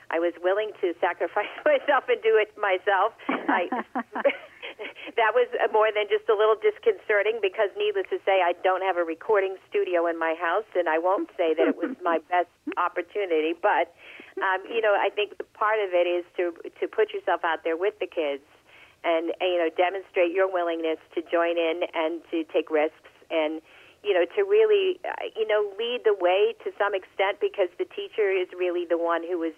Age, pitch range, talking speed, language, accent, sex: 50-69, 170-250 Hz, 195 wpm, English, American, female